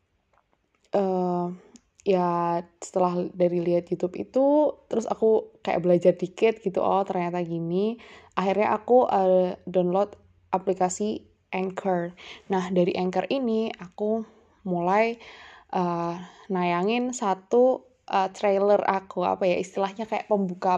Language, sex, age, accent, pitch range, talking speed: Indonesian, female, 20-39, native, 185-225 Hz, 115 wpm